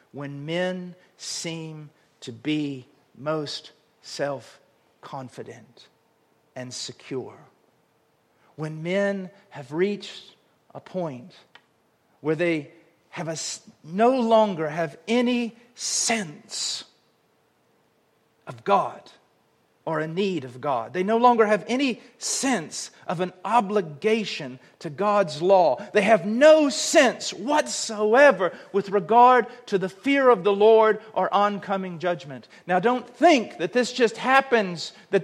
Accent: American